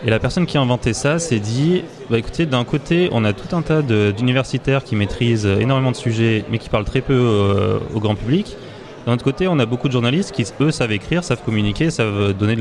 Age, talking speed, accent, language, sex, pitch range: 30-49, 245 wpm, French, French, male, 100-125 Hz